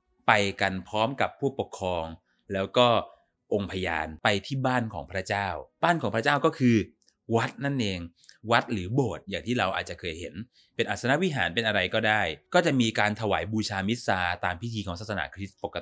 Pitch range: 95-125 Hz